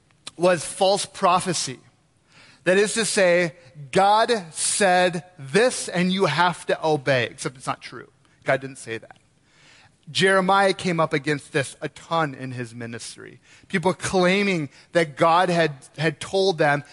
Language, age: English, 30-49